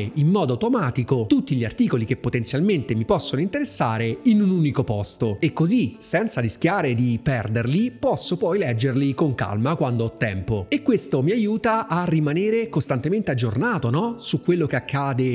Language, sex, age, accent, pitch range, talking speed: Italian, male, 30-49, native, 115-160 Hz, 160 wpm